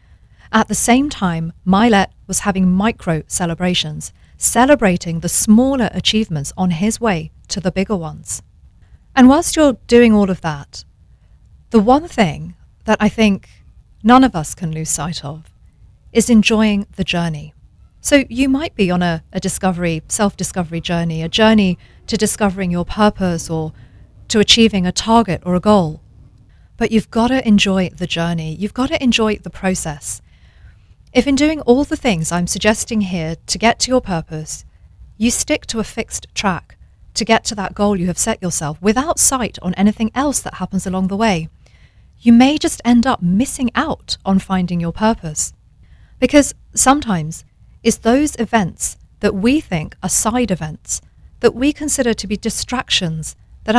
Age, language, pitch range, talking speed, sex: 40-59, English, 165-230 Hz, 165 wpm, female